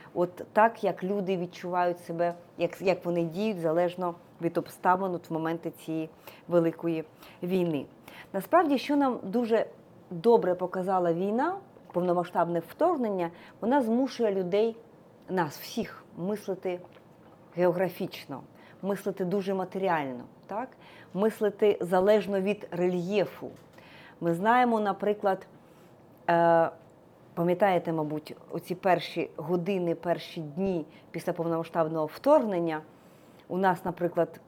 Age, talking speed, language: 30-49, 105 wpm, Ukrainian